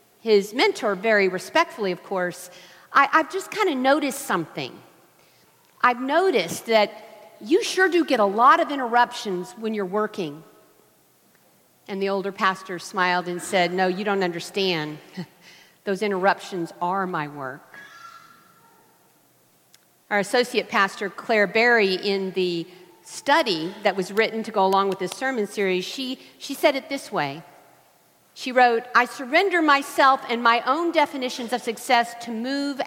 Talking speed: 145 wpm